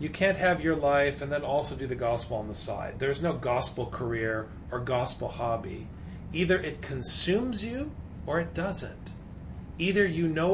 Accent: American